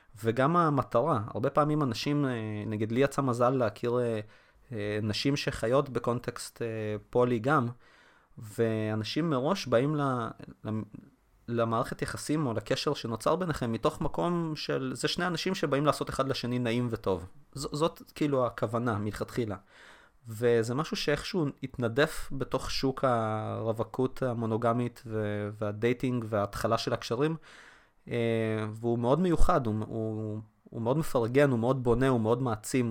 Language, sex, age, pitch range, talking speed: Hebrew, male, 20-39, 110-140 Hz, 120 wpm